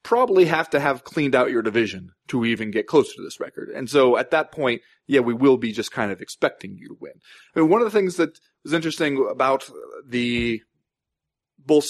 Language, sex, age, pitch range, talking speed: English, male, 20-39, 115-150 Hz, 205 wpm